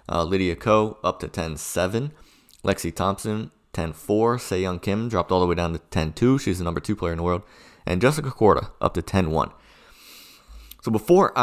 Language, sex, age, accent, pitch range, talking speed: English, male, 30-49, American, 85-105 Hz, 180 wpm